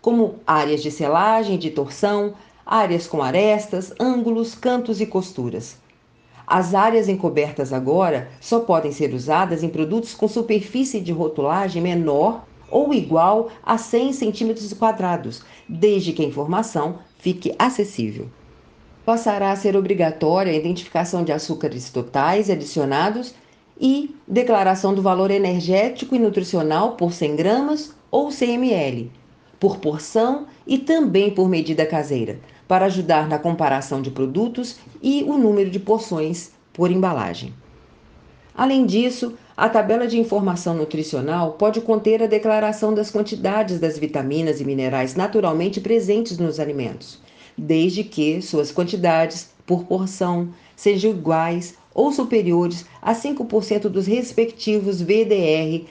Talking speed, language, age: 125 wpm, Portuguese, 50-69